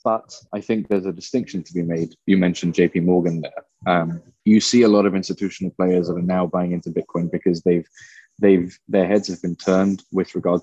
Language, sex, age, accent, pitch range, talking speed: English, male, 20-39, British, 85-100 Hz, 215 wpm